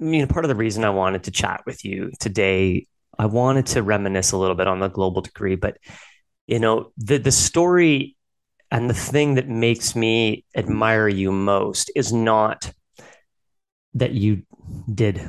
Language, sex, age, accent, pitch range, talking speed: English, male, 30-49, American, 100-120 Hz, 175 wpm